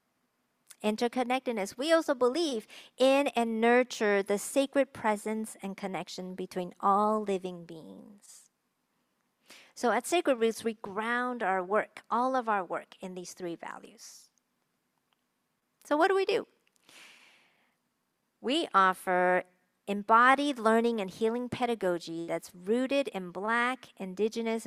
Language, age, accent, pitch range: English, 50-69, American, 190-245 Hz